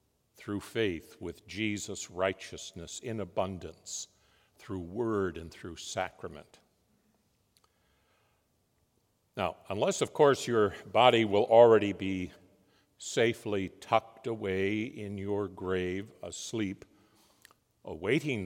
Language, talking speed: English, 95 wpm